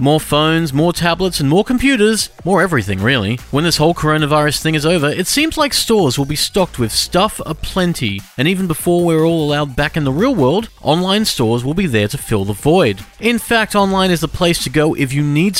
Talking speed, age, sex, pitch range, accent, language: 225 wpm, 30-49, male, 135-195 Hz, Australian, English